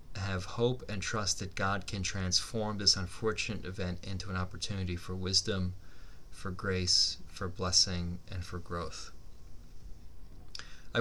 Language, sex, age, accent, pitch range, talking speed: English, male, 30-49, American, 90-100 Hz, 130 wpm